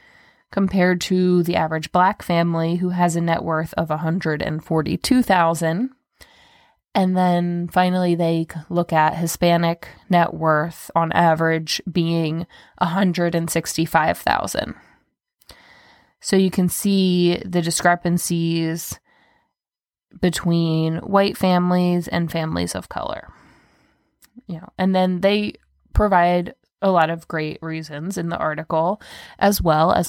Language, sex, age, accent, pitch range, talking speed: English, female, 20-39, American, 165-185 Hz, 115 wpm